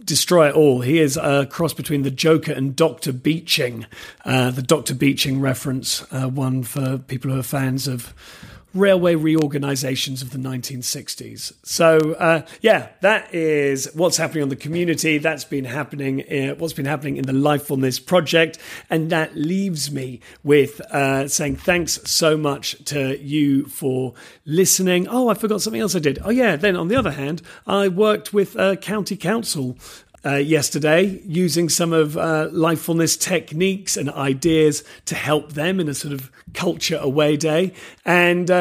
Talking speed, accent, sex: 170 wpm, British, male